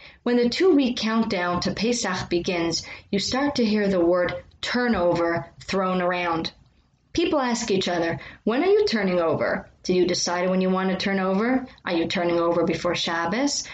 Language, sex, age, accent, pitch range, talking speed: English, female, 30-49, American, 185-240 Hz, 175 wpm